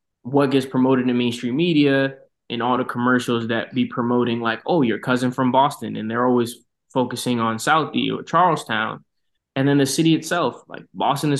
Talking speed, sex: 185 wpm, male